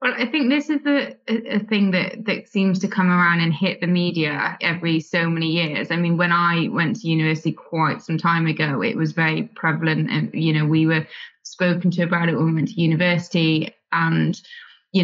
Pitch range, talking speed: 160-180 Hz, 210 wpm